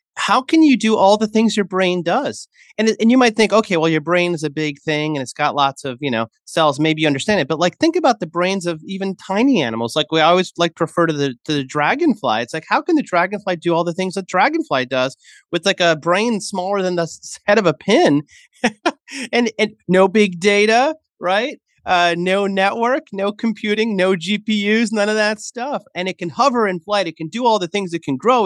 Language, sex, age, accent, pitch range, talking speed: English, male, 30-49, American, 155-220 Hz, 235 wpm